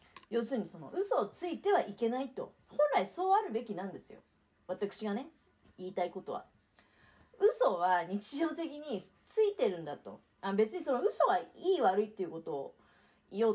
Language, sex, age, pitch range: Japanese, female, 40-59, 200-325 Hz